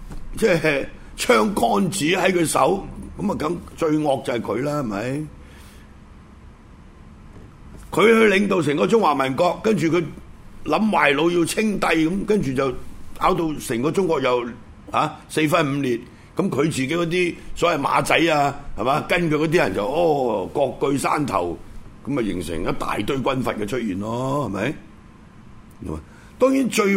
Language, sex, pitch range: Chinese, male, 120-175 Hz